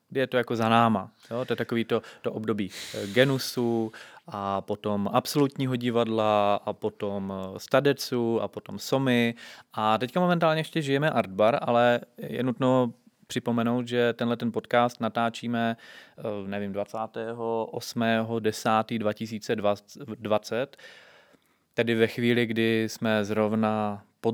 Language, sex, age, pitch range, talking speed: Czech, male, 20-39, 110-120 Hz, 125 wpm